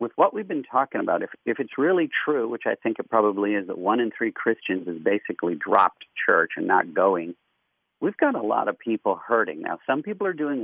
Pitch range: 95-165 Hz